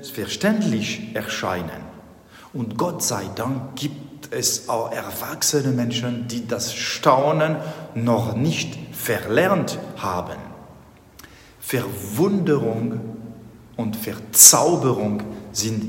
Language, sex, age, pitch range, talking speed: German, male, 60-79, 110-155 Hz, 85 wpm